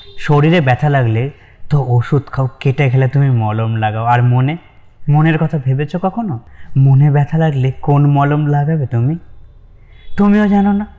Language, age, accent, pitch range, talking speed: Bengali, 20-39, native, 120-155 Hz, 135 wpm